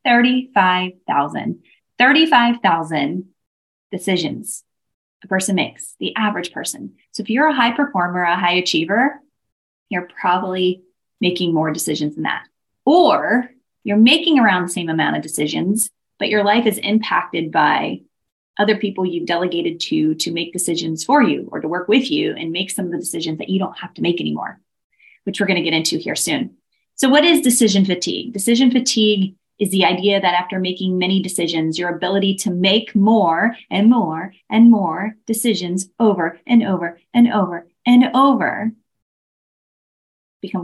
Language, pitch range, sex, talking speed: English, 175-225 Hz, female, 160 wpm